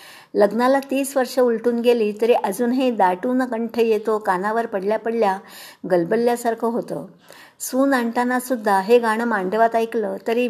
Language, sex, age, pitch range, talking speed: Marathi, male, 60-79, 200-240 Hz, 130 wpm